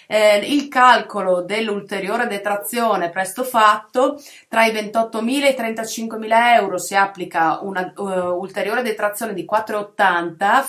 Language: Italian